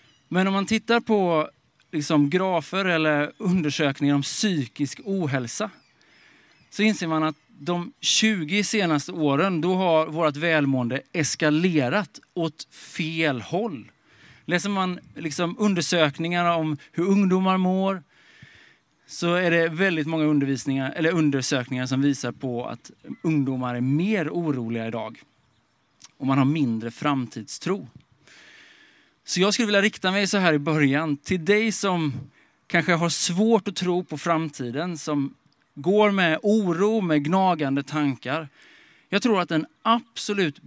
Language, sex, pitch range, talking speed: Swedish, male, 145-185 Hz, 135 wpm